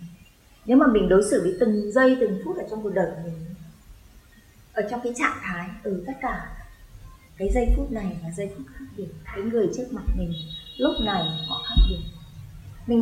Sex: female